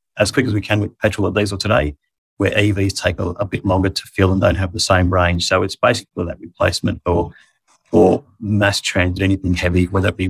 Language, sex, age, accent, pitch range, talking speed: English, male, 30-49, British, 95-105 Hz, 225 wpm